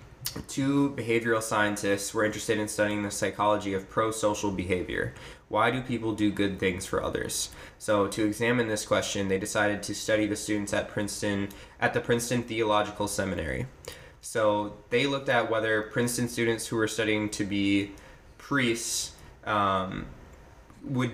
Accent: American